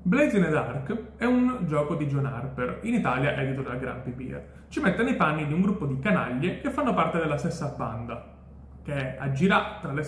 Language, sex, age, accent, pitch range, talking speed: Italian, male, 30-49, native, 135-180 Hz, 210 wpm